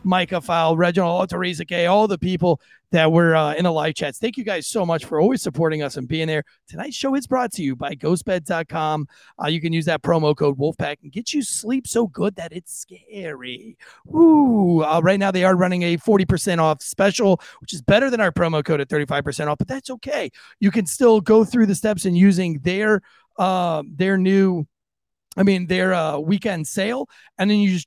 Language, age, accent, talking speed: English, 30-49, American, 215 wpm